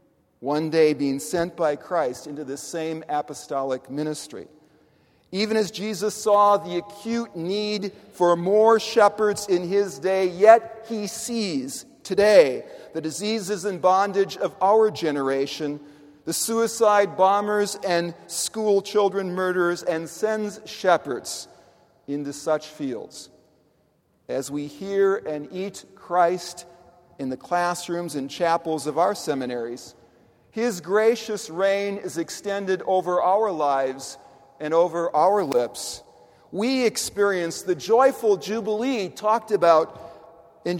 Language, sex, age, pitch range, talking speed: English, male, 40-59, 155-210 Hz, 120 wpm